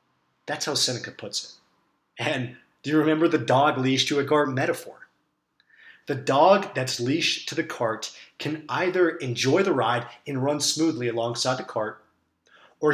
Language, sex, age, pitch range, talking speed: English, male, 30-49, 120-160 Hz, 160 wpm